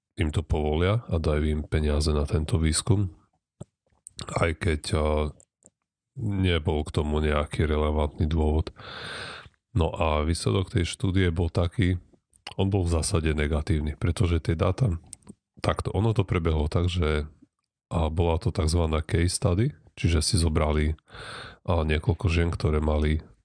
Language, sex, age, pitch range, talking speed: Slovak, male, 30-49, 80-95 Hz, 130 wpm